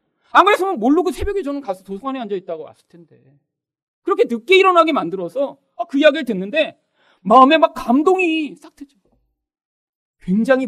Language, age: Korean, 40-59